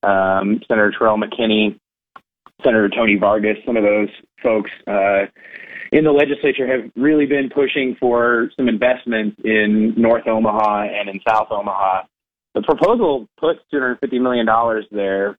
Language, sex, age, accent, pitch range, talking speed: English, male, 30-49, American, 105-125 Hz, 135 wpm